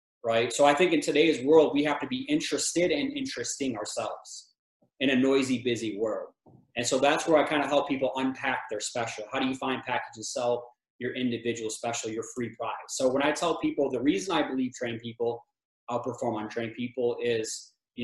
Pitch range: 120-155 Hz